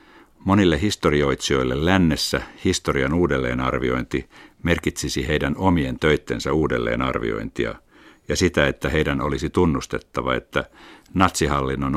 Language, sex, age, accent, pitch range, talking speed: Finnish, male, 60-79, native, 65-85 Hz, 90 wpm